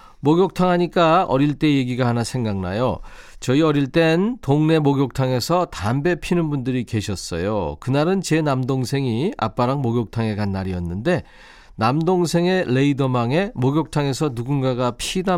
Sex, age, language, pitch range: male, 40-59, Korean, 120-165 Hz